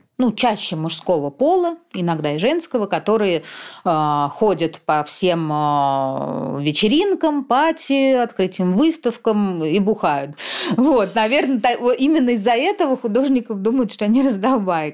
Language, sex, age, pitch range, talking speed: Russian, female, 30-49, 165-220 Hz, 120 wpm